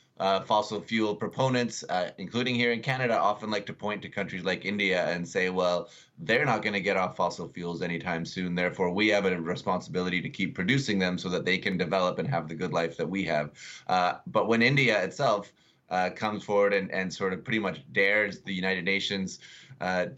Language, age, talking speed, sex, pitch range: English, 30-49, 210 wpm, male, 90-110 Hz